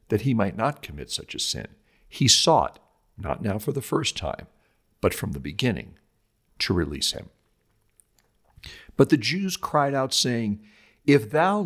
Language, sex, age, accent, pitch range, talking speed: English, male, 60-79, American, 105-150 Hz, 160 wpm